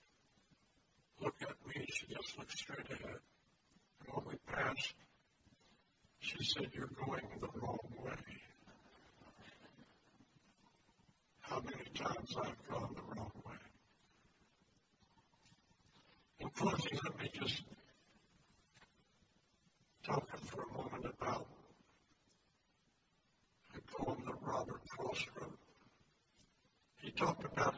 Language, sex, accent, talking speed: English, male, American, 95 wpm